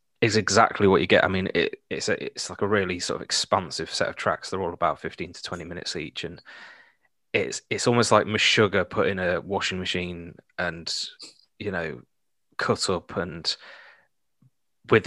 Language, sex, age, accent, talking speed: English, male, 20-39, British, 185 wpm